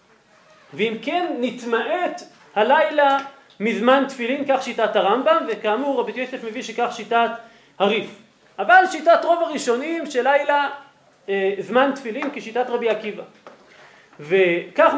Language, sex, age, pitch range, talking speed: Hebrew, male, 40-59, 230-310 Hz, 115 wpm